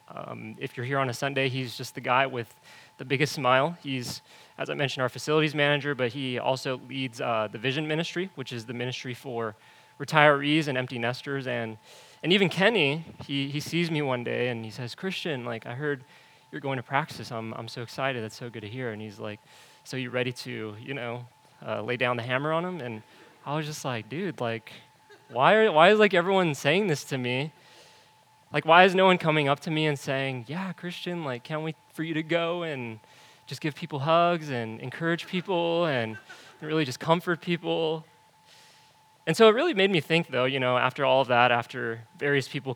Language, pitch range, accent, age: English, 125-155 Hz, American, 20-39